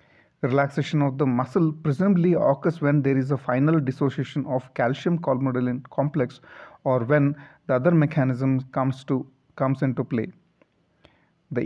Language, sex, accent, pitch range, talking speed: English, male, Indian, 130-155 Hz, 135 wpm